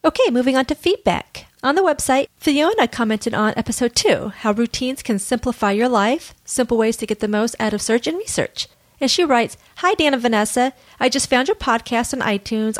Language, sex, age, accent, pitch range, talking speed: English, female, 40-59, American, 220-270 Hz, 200 wpm